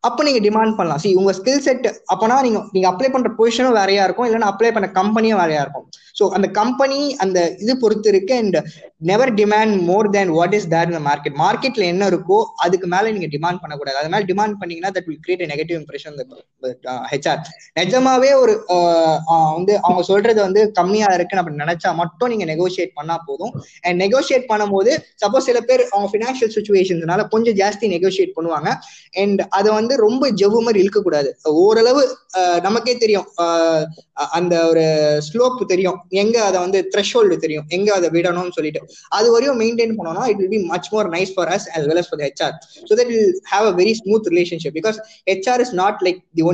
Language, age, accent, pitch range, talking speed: Tamil, 20-39, native, 175-220 Hz, 55 wpm